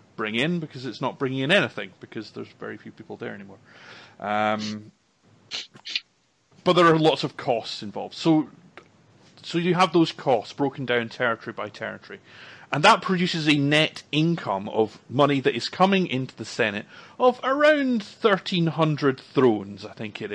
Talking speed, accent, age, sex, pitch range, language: 160 wpm, British, 30-49, male, 120-175 Hz, English